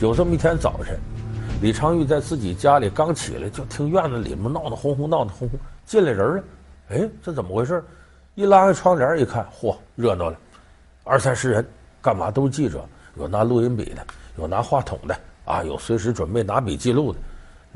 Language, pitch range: Chinese, 95-145 Hz